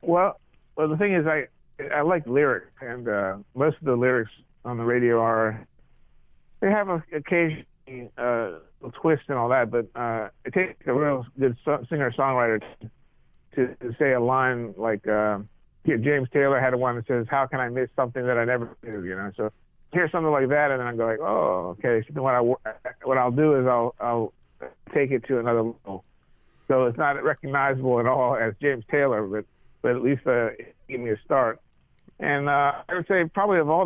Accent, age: American, 50-69